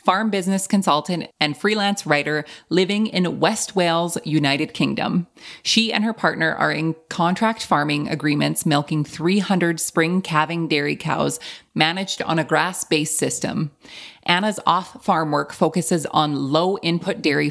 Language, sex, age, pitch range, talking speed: English, female, 30-49, 150-190 Hz, 135 wpm